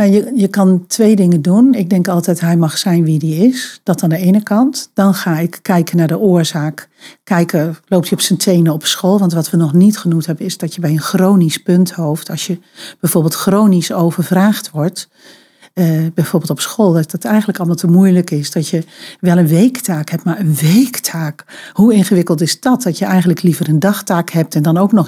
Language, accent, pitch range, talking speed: Dutch, Dutch, 170-205 Hz, 215 wpm